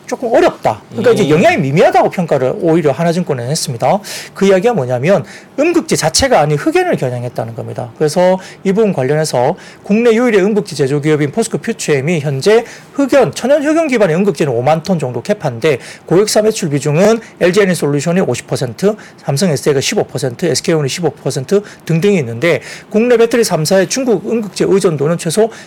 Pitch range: 145-210 Hz